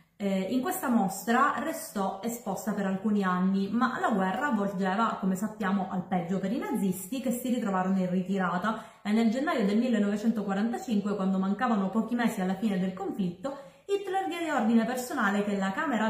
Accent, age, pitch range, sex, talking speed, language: native, 20-39, 190-235 Hz, female, 170 wpm, Italian